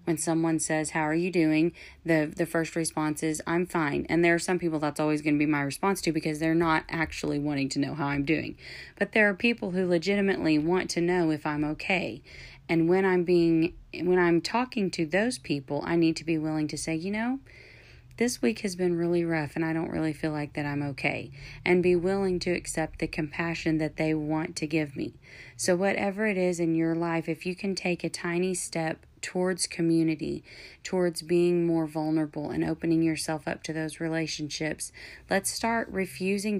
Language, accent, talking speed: English, American, 205 wpm